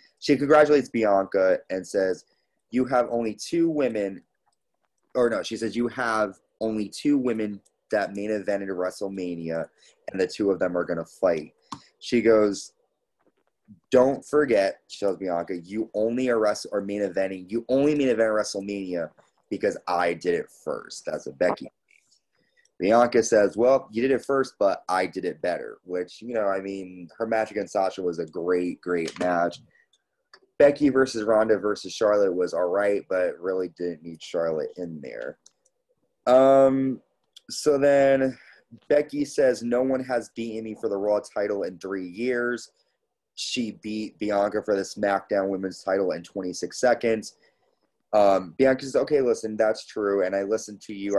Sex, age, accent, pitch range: male, 20-39, American, 95-135 Hz